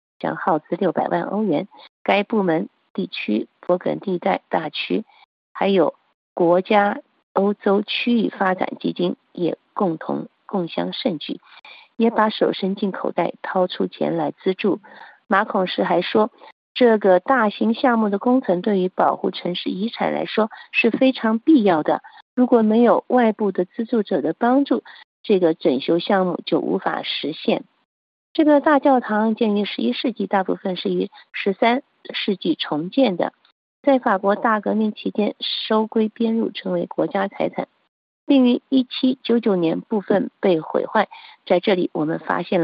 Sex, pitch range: female, 190-250 Hz